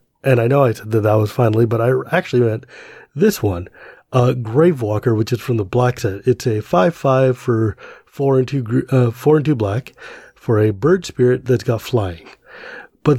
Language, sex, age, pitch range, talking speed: English, male, 30-49, 120-150 Hz, 205 wpm